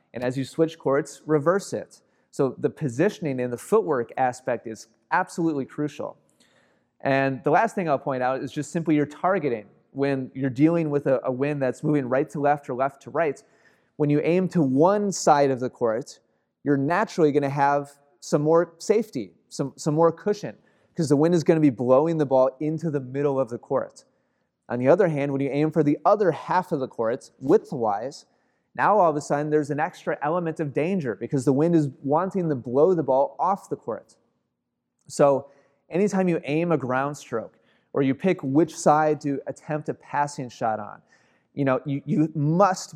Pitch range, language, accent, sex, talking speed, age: 135-160 Hz, English, American, male, 195 wpm, 30-49